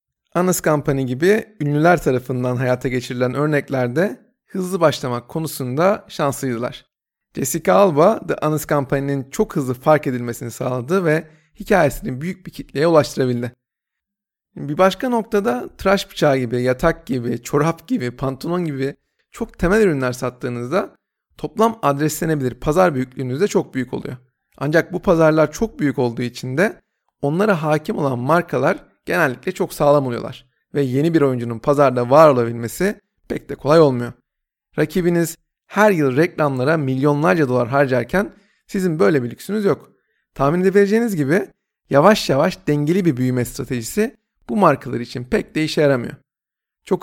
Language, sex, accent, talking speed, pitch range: Turkish, male, native, 135 wpm, 130-180 Hz